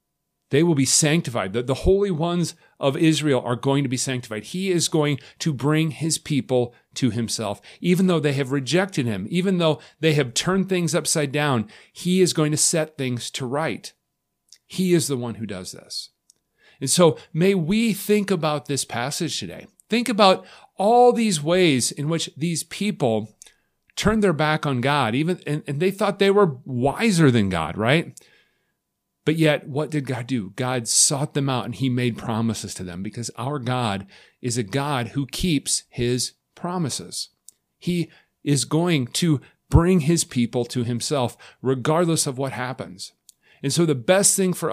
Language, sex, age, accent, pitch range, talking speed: English, male, 40-59, American, 120-170 Hz, 175 wpm